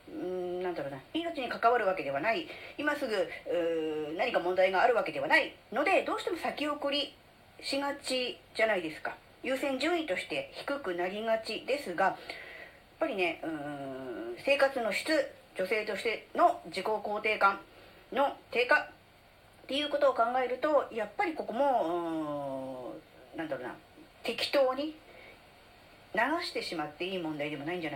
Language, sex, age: Japanese, female, 40-59